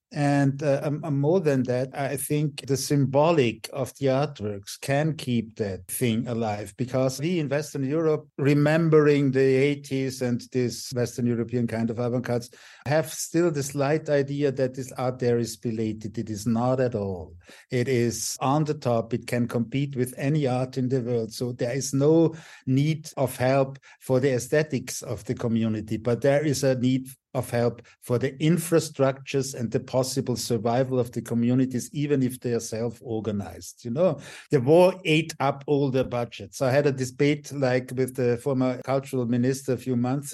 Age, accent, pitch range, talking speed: 50-69, German, 120-140 Hz, 180 wpm